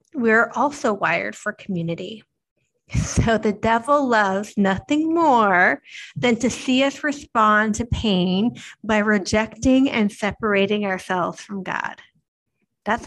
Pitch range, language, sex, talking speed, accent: 190-235 Hz, English, female, 120 wpm, American